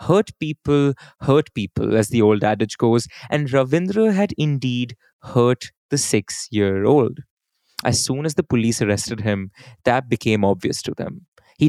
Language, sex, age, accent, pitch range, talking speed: English, male, 20-39, Indian, 115-155 Hz, 150 wpm